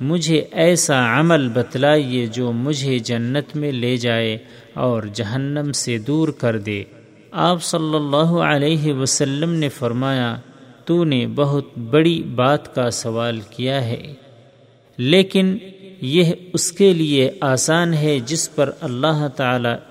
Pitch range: 120-155 Hz